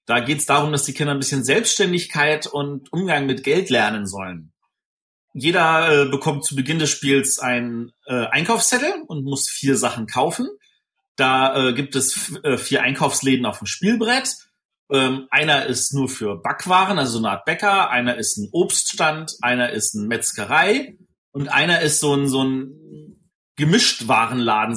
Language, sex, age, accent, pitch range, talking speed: German, male, 30-49, German, 130-185 Hz, 165 wpm